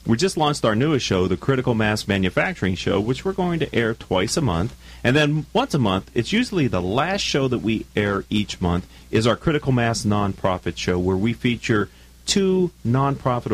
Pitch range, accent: 90-135 Hz, American